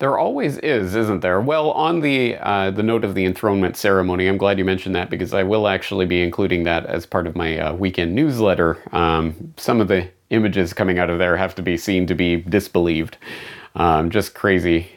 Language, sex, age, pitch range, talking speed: English, male, 30-49, 90-110 Hz, 215 wpm